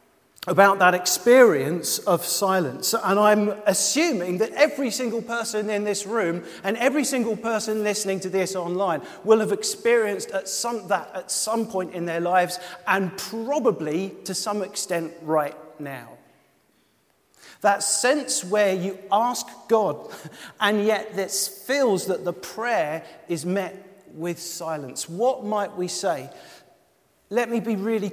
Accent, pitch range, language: British, 165-215 Hz, English